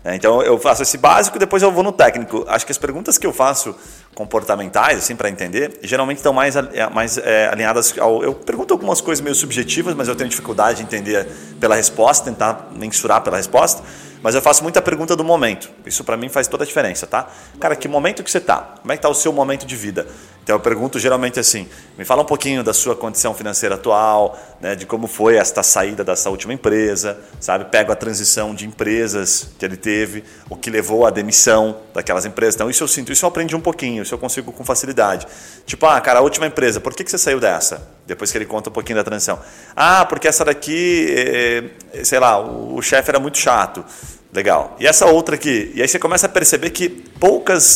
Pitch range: 110-150 Hz